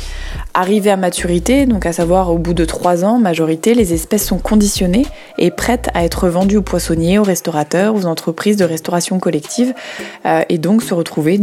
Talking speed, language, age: 180 wpm, French, 20-39